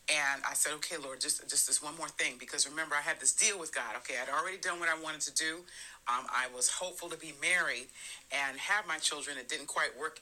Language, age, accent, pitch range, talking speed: English, 40-59, American, 140-170 Hz, 255 wpm